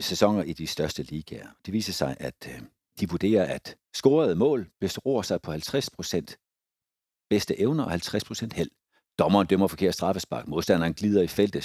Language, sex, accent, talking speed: Danish, male, native, 160 wpm